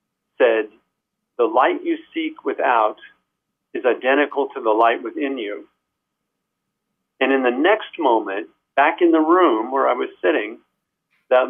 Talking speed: 140 wpm